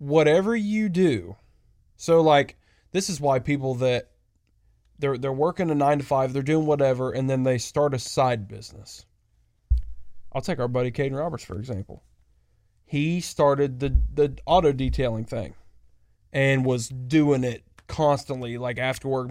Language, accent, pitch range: English, American, 110-145 Hz